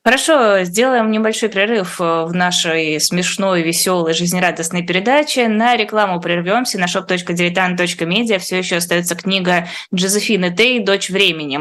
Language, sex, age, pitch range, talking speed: Russian, female, 20-39, 175-220 Hz, 125 wpm